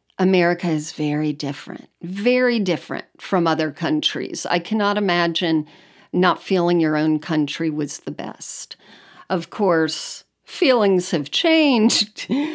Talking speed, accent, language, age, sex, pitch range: 120 wpm, American, English, 50-69, female, 165-210 Hz